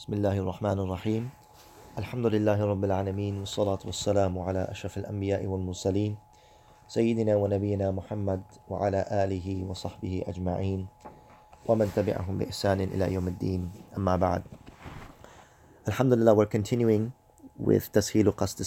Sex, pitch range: male, 95-115 Hz